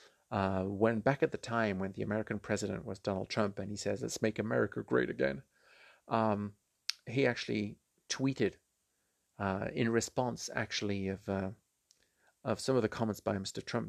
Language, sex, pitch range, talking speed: English, male, 100-125 Hz, 170 wpm